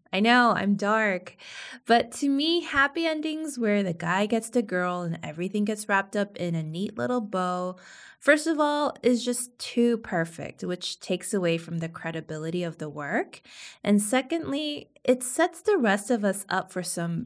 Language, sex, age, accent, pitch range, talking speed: English, female, 20-39, American, 165-240 Hz, 180 wpm